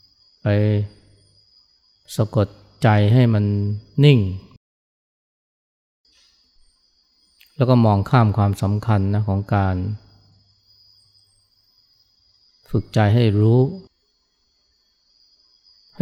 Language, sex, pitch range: Thai, male, 95-110 Hz